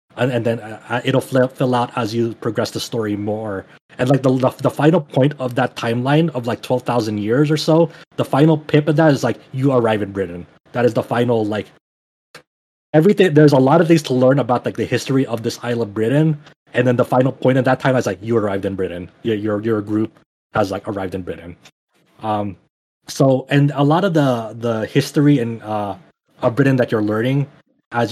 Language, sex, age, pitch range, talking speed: English, male, 30-49, 110-135 Hz, 210 wpm